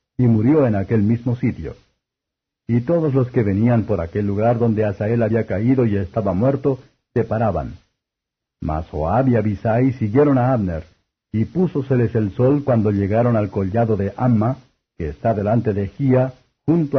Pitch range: 105-130 Hz